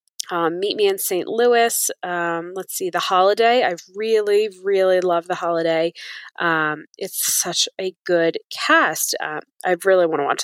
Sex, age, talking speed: female, 20-39, 165 wpm